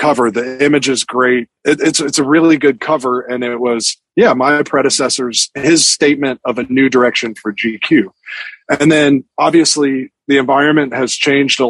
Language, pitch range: English, 120-140 Hz